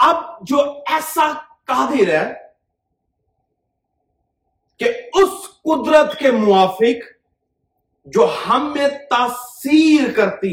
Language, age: Urdu, 40-59